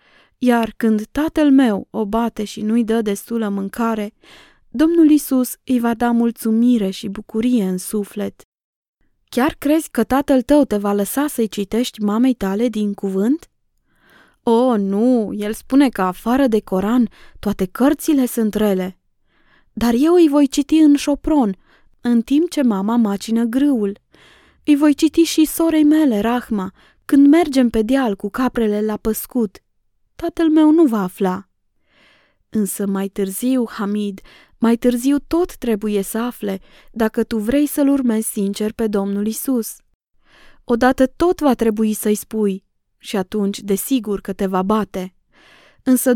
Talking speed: 145 wpm